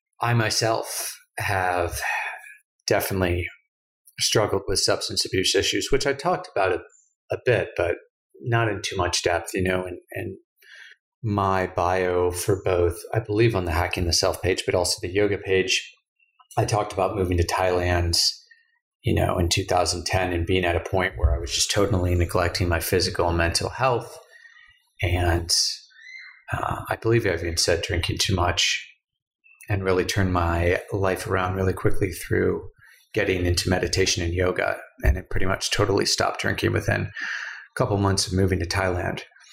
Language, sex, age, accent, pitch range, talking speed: English, male, 30-49, American, 90-115 Hz, 160 wpm